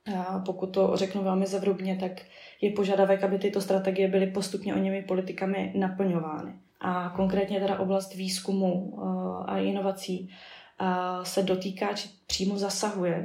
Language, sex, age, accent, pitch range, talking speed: Czech, female, 20-39, native, 180-195 Hz, 135 wpm